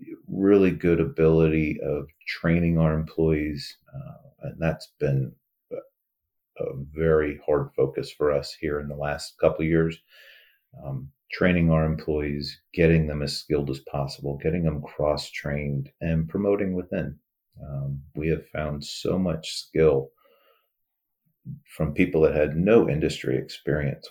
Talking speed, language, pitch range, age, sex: 135 wpm, English, 75-85 Hz, 40-59, male